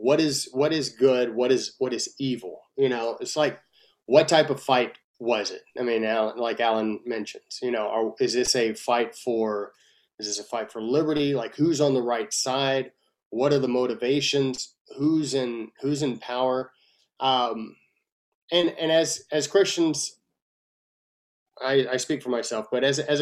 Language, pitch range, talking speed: English, 125-155 Hz, 180 wpm